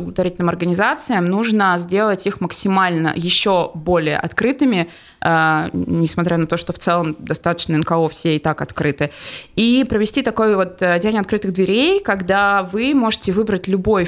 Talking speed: 145 wpm